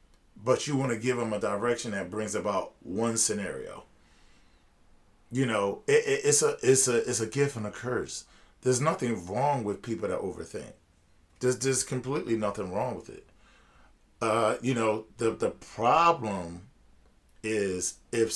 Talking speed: 160 wpm